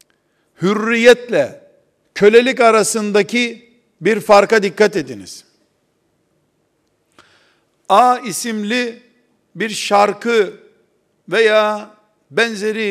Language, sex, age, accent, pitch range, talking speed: Turkish, male, 50-69, native, 185-225 Hz, 60 wpm